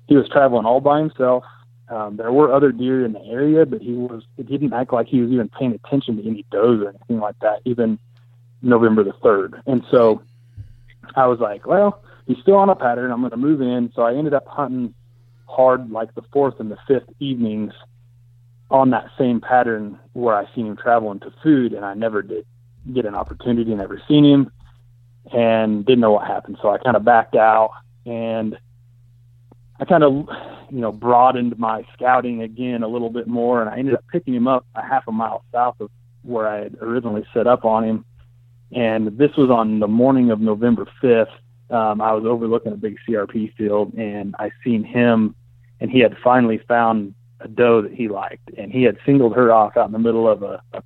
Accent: American